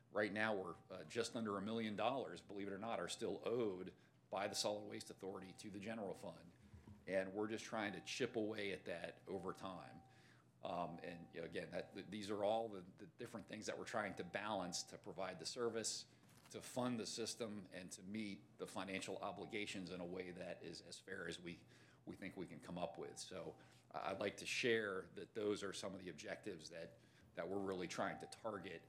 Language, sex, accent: English, male, American